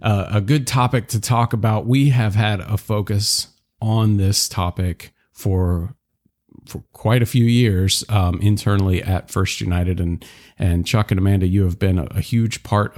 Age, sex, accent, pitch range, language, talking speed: 40-59, male, American, 95-120 Hz, English, 175 wpm